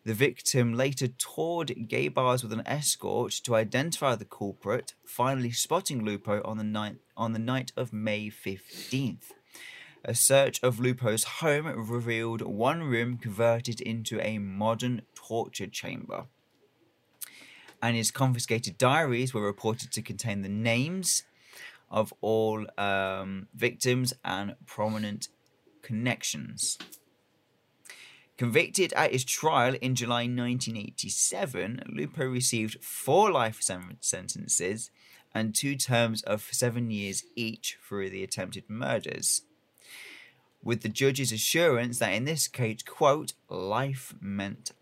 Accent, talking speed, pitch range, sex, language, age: British, 120 wpm, 110-130 Hz, male, English, 30-49